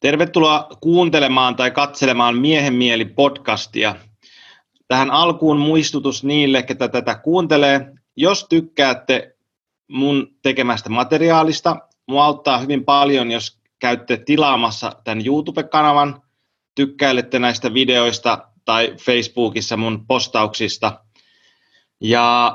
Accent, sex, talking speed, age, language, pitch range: native, male, 95 wpm, 30-49, Finnish, 120-155 Hz